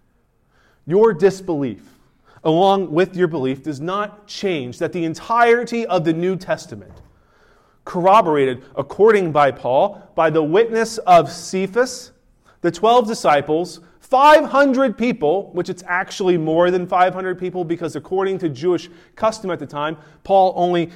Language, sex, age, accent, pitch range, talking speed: English, male, 30-49, American, 150-195 Hz, 135 wpm